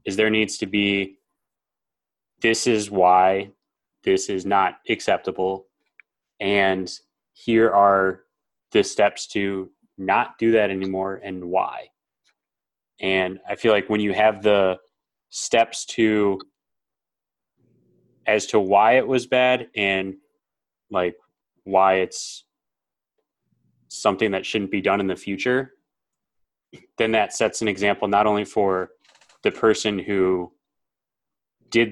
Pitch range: 95-105 Hz